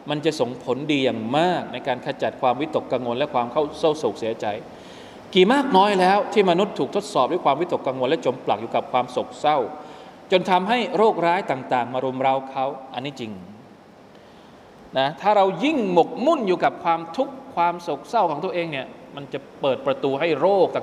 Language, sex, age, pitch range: Thai, male, 20-39, 135-180 Hz